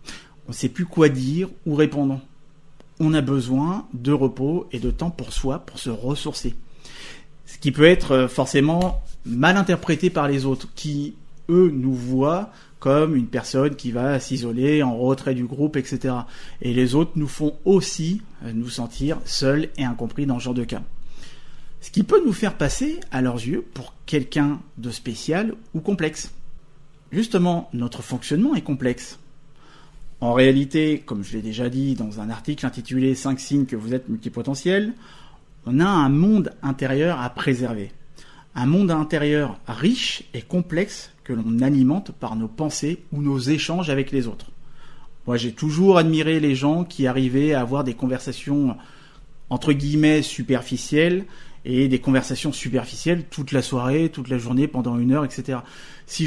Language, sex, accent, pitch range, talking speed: French, male, French, 130-155 Hz, 165 wpm